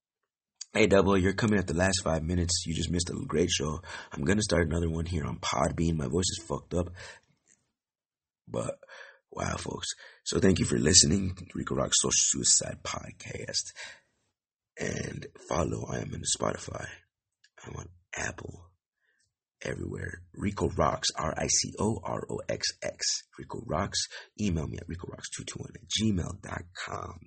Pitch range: 80-95 Hz